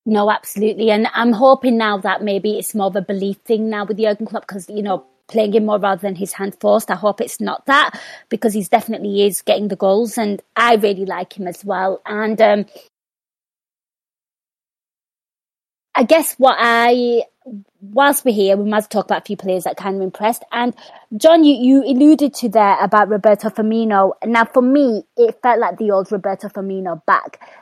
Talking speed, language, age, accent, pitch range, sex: 195 wpm, English, 20-39, British, 205-240 Hz, female